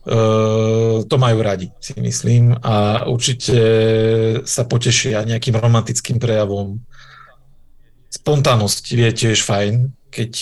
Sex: male